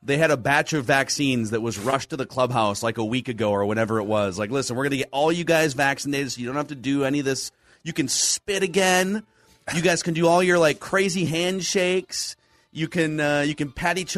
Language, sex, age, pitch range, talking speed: English, male, 30-49, 110-160 Hz, 250 wpm